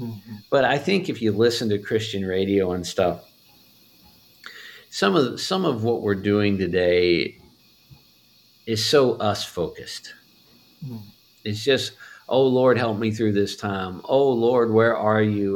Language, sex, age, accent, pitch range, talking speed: English, male, 50-69, American, 100-125 Hz, 145 wpm